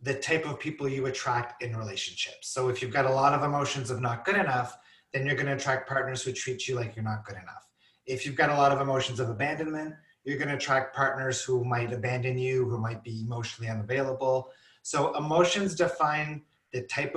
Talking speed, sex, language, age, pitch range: 210 wpm, male, English, 30-49, 125-155 Hz